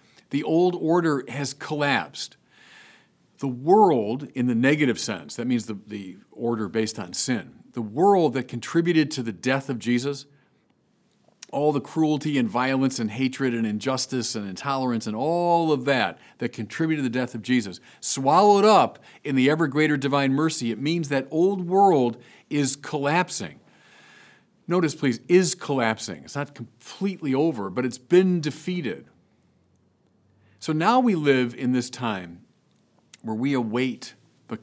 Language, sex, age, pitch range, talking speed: English, male, 50-69, 120-155 Hz, 150 wpm